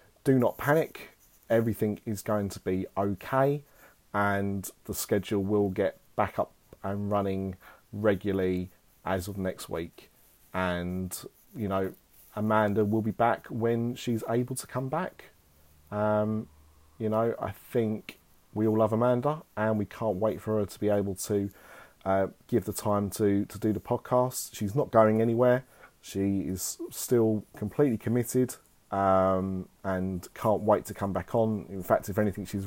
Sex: male